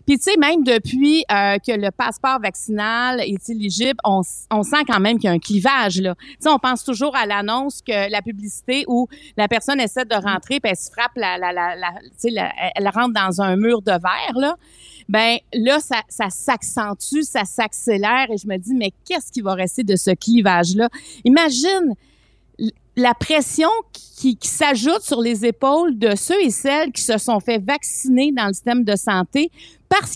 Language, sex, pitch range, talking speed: French, female, 210-275 Hz, 205 wpm